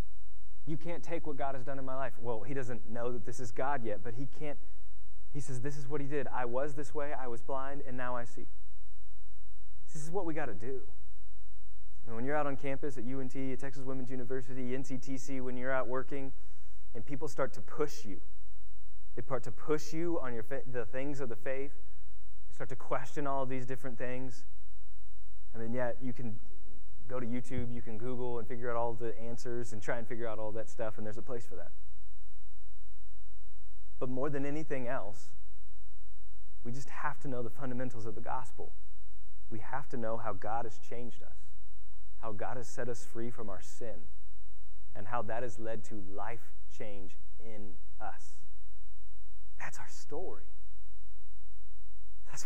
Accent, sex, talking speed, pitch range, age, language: American, male, 190 wpm, 80-130 Hz, 20-39, English